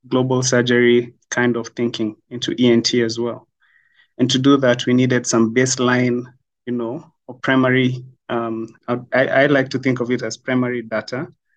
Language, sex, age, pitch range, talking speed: English, male, 30-49, 115-130 Hz, 165 wpm